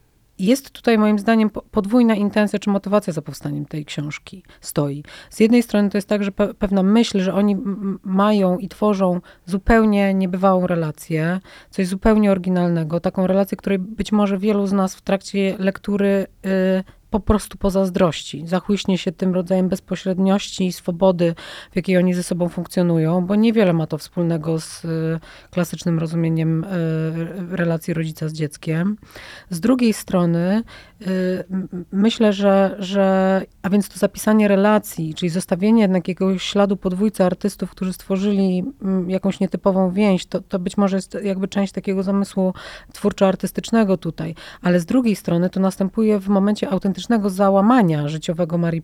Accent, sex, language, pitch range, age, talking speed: native, female, Polish, 180-200 Hz, 30-49, 150 wpm